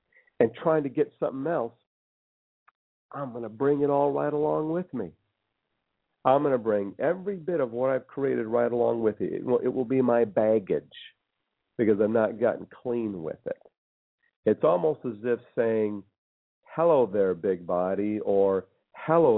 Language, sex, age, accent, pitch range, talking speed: English, male, 50-69, American, 100-125 Hz, 165 wpm